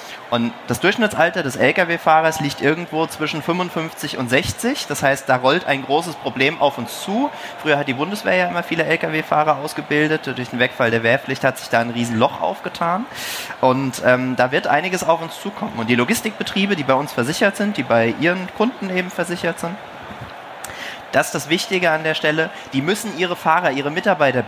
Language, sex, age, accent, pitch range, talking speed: German, male, 30-49, German, 125-165 Hz, 190 wpm